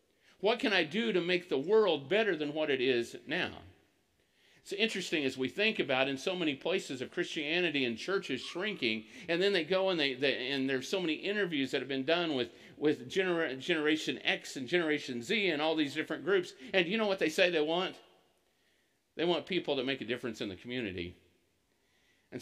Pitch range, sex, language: 130-180 Hz, male, English